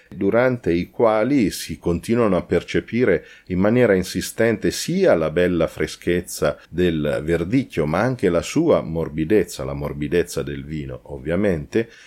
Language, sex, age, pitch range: Italian, male, 40-59, 80-100 Hz